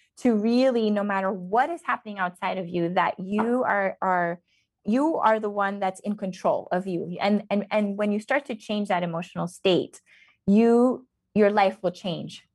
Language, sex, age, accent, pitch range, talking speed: English, female, 20-39, American, 180-220 Hz, 185 wpm